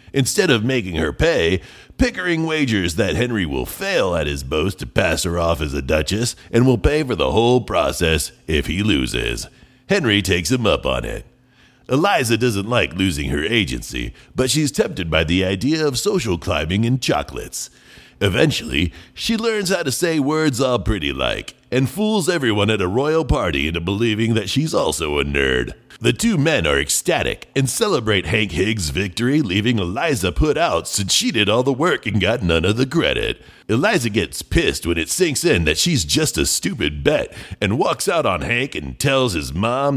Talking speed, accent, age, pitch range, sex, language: 190 wpm, American, 40-59, 85-135 Hz, male, English